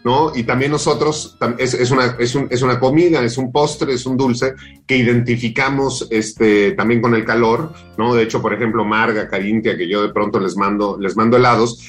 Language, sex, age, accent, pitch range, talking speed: Spanish, male, 40-59, Mexican, 110-135 Hz, 205 wpm